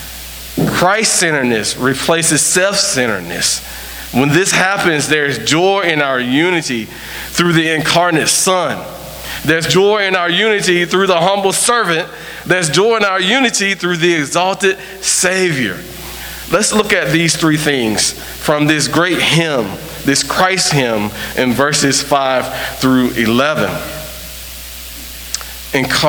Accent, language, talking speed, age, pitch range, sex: American, English, 115 wpm, 40-59, 135-185 Hz, male